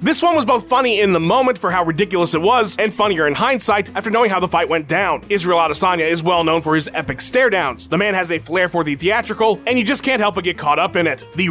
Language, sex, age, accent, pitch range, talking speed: English, male, 30-49, American, 170-235 Hz, 275 wpm